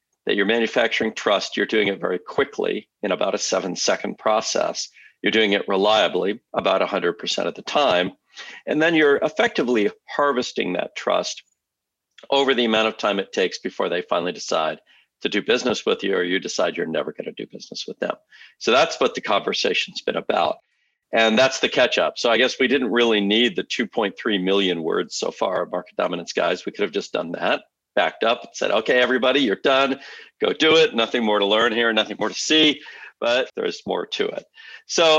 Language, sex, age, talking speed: English, male, 50-69, 200 wpm